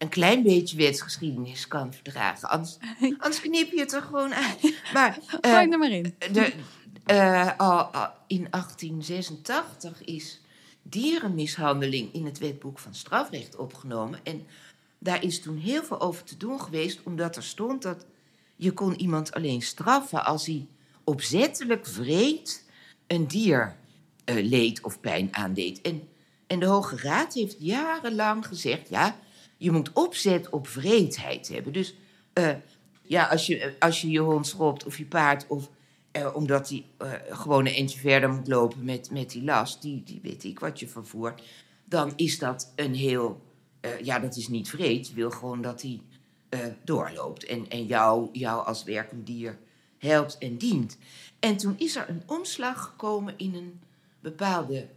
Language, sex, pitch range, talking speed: Dutch, female, 135-190 Hz, 160 wpm